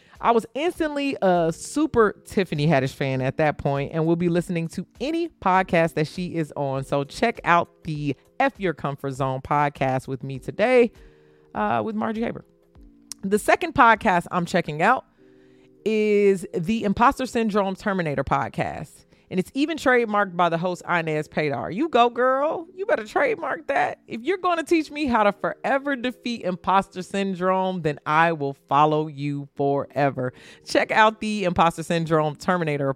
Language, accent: English, American